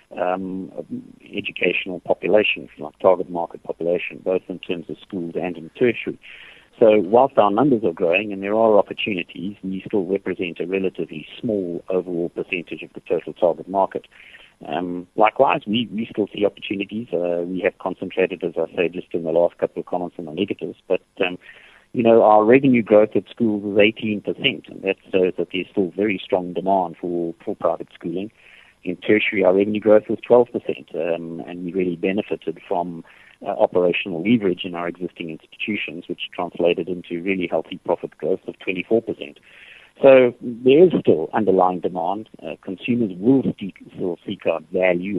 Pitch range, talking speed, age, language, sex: 85-105 Hz, 170 wpm, 50-69, English, male